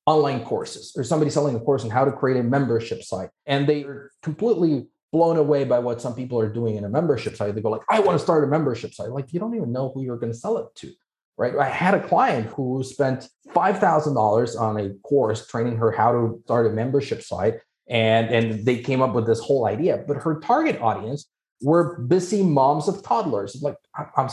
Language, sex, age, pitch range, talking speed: English, male, 30-49, 115-155 Hz, 225 wpm